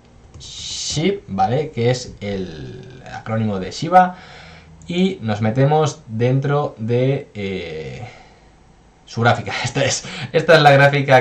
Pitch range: 100-125 Hz